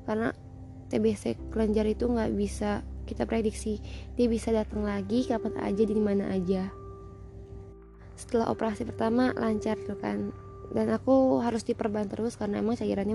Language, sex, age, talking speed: Indonesian, female, 20-39, 140 wpm